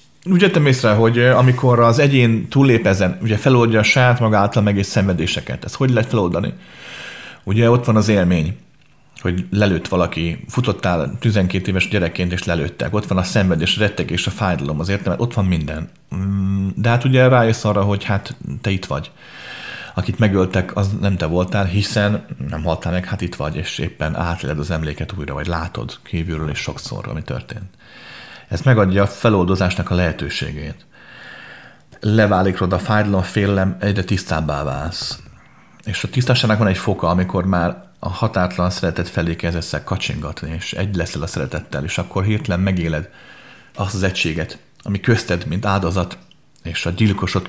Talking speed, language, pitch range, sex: 160 wpm, Hungarian, 85-105 Hz, male